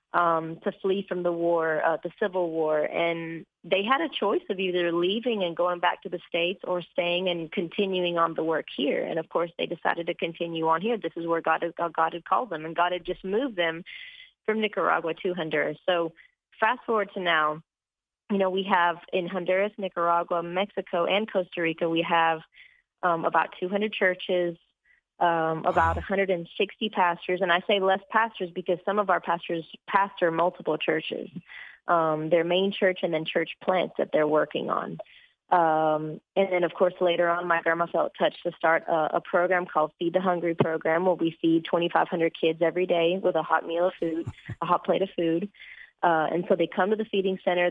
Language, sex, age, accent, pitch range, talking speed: English, female, 30-49, American, 165-190 Hz, 200 wpm